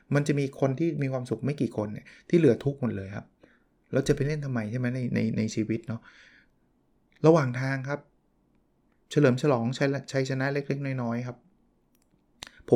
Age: 20-39